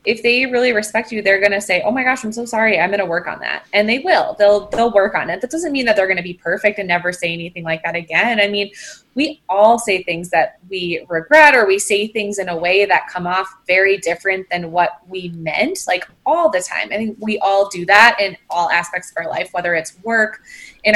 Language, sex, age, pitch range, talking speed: English, female, 20-39, 175-220 Hz, 260 wpm